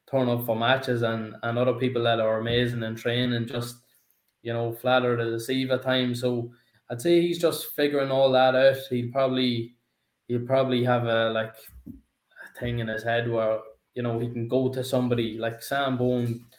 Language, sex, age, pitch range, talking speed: English, male, 20-39, 115-125 Hz, 195 wpm